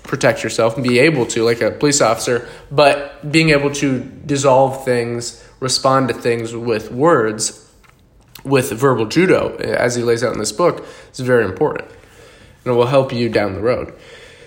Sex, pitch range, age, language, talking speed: male, 120-160 Hz, 20-39, English, 175 wpm